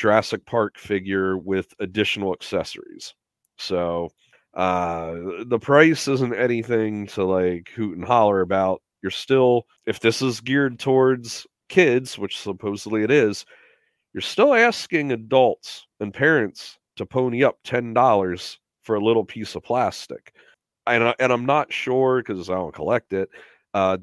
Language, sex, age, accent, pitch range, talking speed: English, male, 40-59, American, 95-120 Hz, 145 wpm